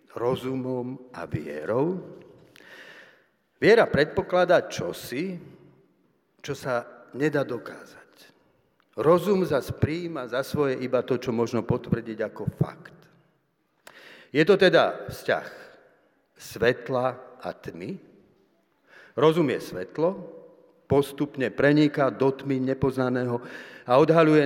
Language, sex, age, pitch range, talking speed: Slovak, male, 50-69, 120-155 Hz, 95 wpm